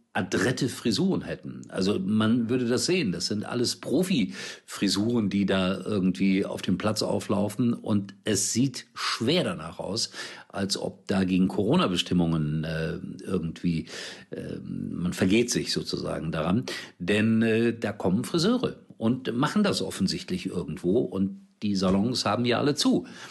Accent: German